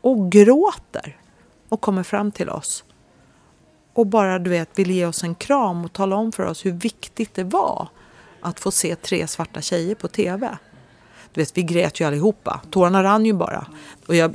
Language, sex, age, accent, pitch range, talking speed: Swedish, female, 40-59, native, 155-195 Hz, 190 wpm